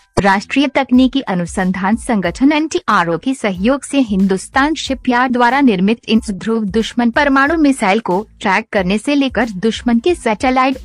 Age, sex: 50-69, female